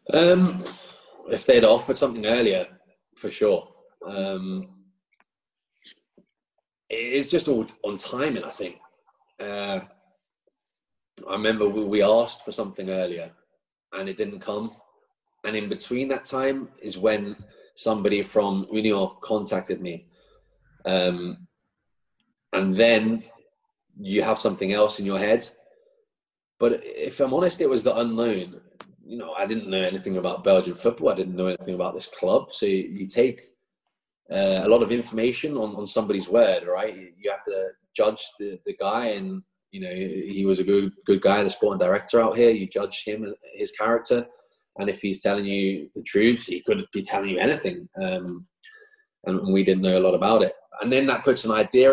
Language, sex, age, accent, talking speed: English, male, 20-39, British, 165 wpm